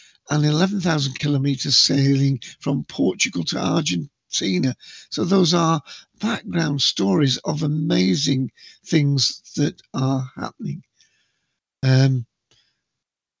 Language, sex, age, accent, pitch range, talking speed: English, male, 50-69, British, 130-155 Hz, 90 wpm